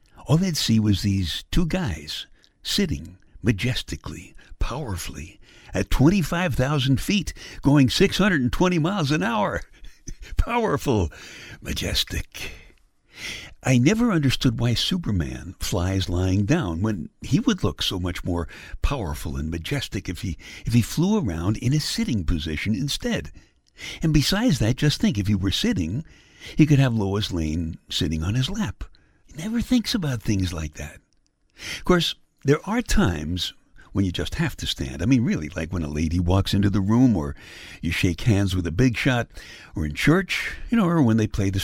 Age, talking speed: 60-79, 160 wpm